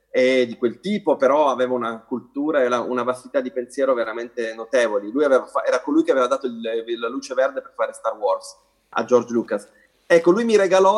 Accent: native